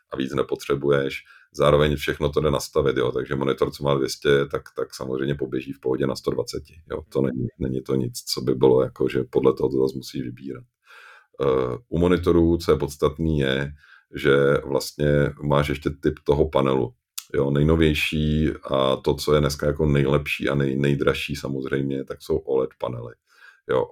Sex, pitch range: male, 65-75 Hz